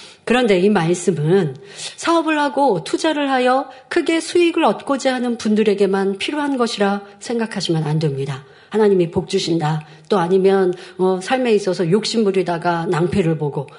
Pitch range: 185-250 Hz